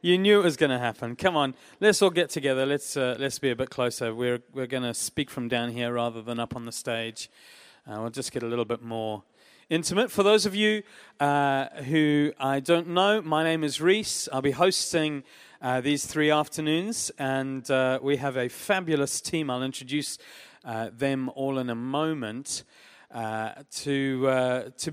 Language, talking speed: English, 195 wpm